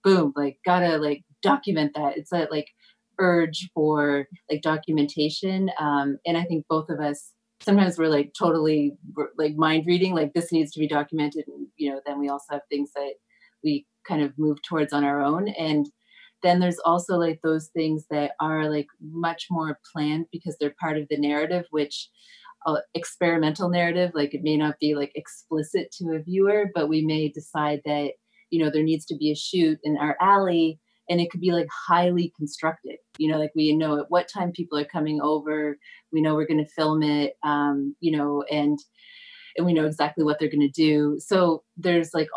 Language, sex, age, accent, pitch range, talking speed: English, female, 30-49, American, 150-175 Hz, 195 wpm